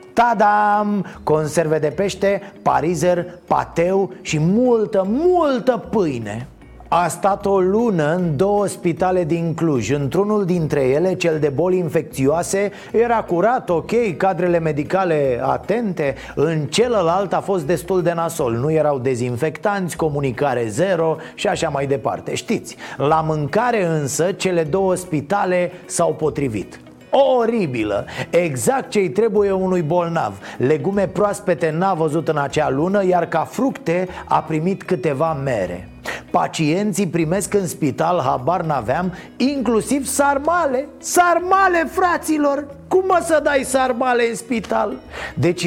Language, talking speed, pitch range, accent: Romanian, 125 wpm, 160-210 Hz, native